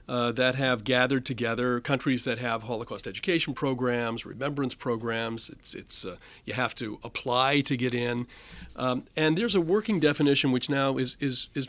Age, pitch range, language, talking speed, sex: 40-59, 125-155 Hz, English, 175 wpm, male